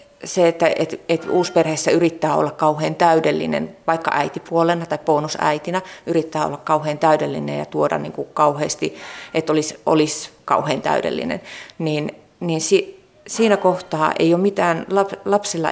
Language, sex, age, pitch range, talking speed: Finnish, female, 30-49, 160-205 Hz, 140 wpm